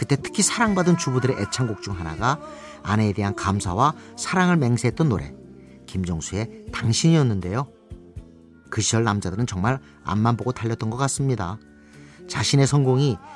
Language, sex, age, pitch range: Korean, male, 40-59, 105-145 Hz